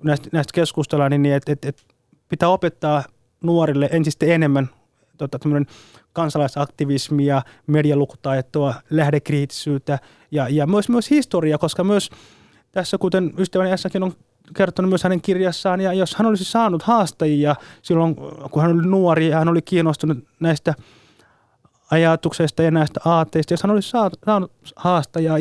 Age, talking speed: 20-39, 130 wpm